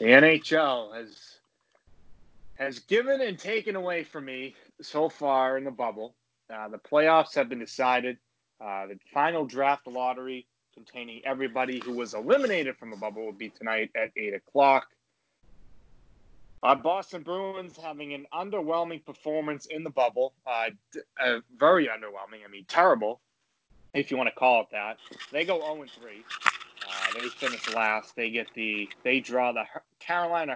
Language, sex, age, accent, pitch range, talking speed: English, male, 20-39, American, 115-155 Hz, 155 wpm